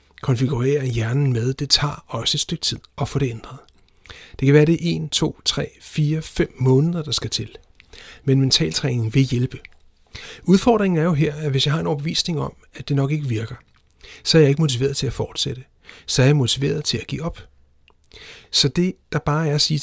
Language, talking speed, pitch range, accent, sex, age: Danish, 215 wpm, 120-150 Hz, native, male, 60-79